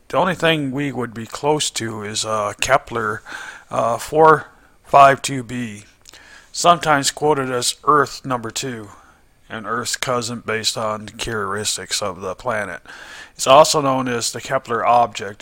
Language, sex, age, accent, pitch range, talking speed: English, male, 40-59, American, 110-130 Hz, 140 wpm